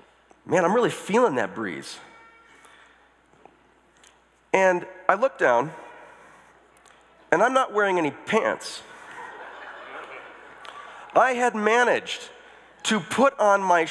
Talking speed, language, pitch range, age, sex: 100 wpm, English, 165-255 Hz, 40-59, male